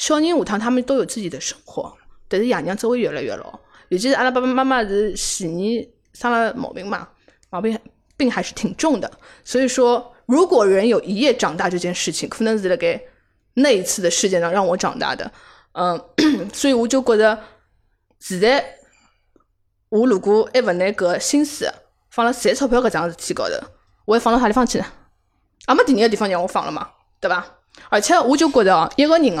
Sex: female